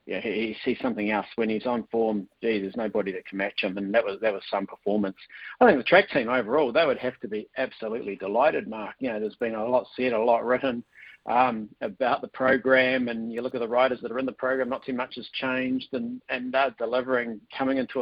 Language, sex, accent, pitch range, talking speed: English, male, Australian, 120-135 Hz, 255 wpm